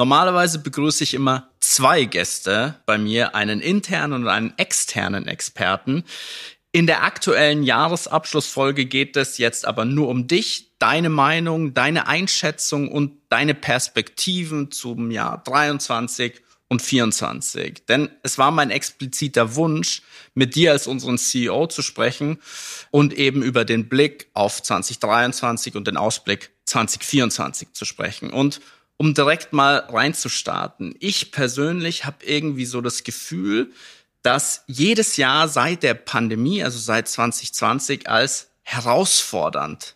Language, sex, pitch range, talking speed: German, male, 125-155 Hz, 130 wpm